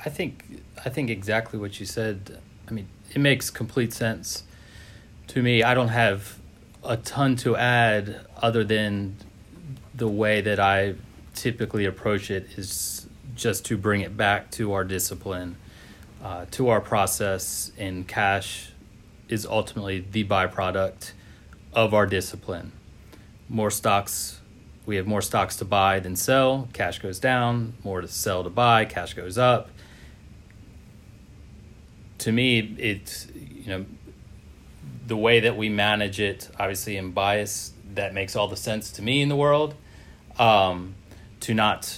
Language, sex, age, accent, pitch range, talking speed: English, male, 30-49, American, 95-115 Hz, 145 wpm